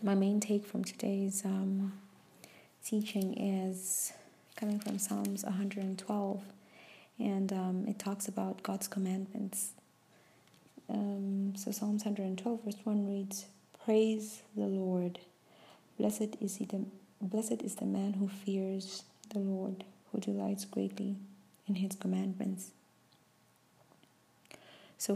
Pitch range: 190-205 Hz